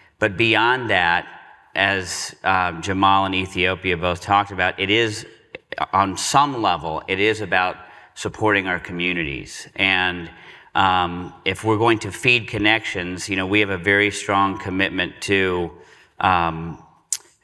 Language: English